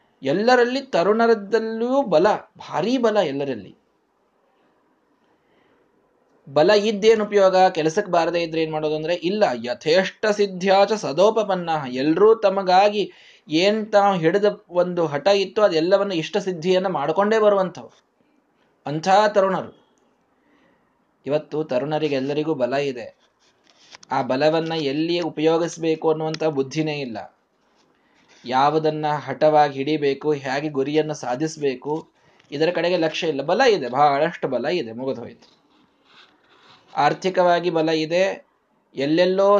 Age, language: 20-39, Kannada